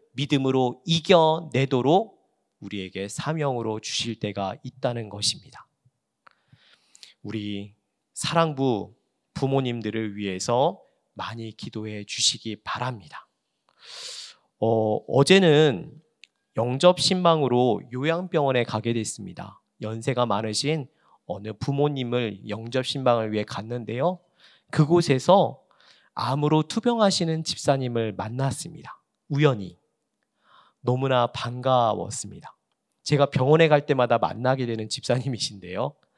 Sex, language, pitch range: male, Korean, 115-150 Hz